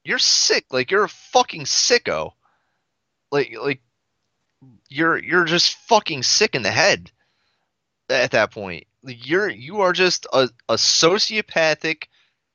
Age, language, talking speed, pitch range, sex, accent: 30-49, English, 135 wpm, 100-150 Hz, male, American